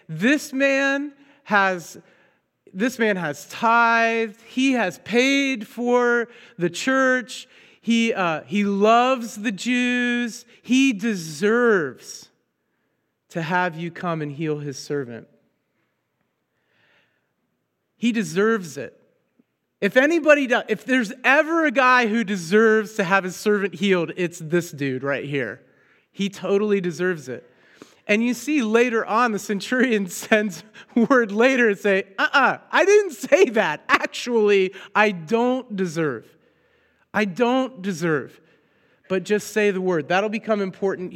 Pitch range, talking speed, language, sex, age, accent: 180-240 Hz, 120 wpm, English, male, 40-59, American